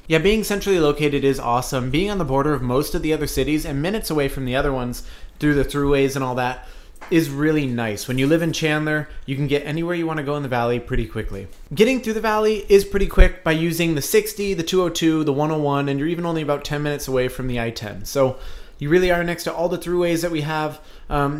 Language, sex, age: English, male, 30-49